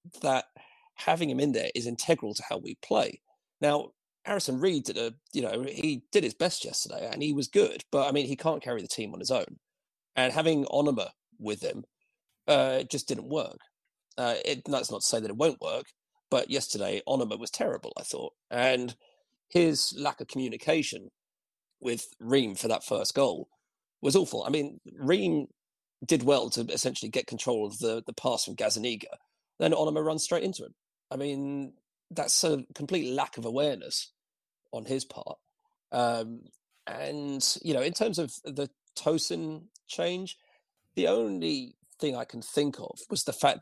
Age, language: 40-59, English